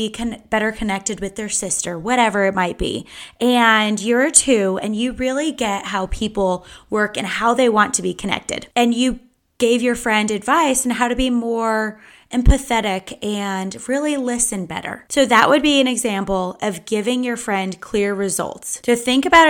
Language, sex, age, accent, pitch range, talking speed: English, female, 20-39, American, 195-250 Hz, 180 wpm